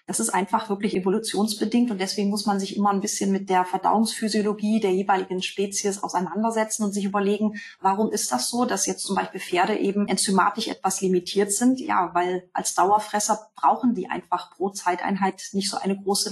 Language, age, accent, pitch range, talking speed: German, 30-49, German, 185-225 Hz, 185 wpm